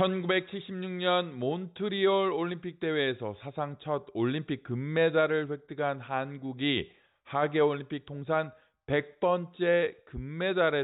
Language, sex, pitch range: Korean, male, 130-165 Hz